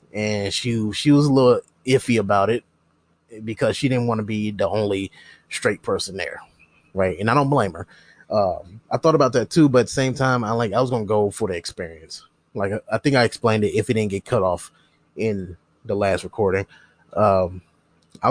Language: English